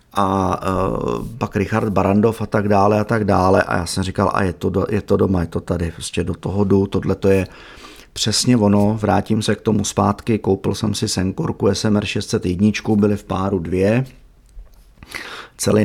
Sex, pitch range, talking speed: male, 100-115 Hz, 180 wpm